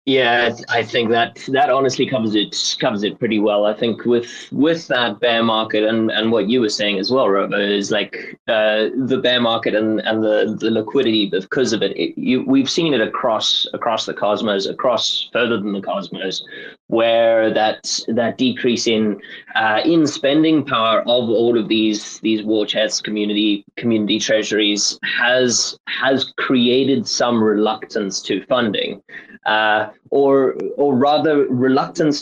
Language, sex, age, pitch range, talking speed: English, male, 20-39, 105-125 Hz, 160 wpm